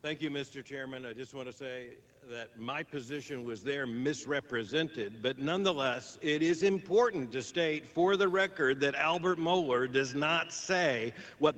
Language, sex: English, male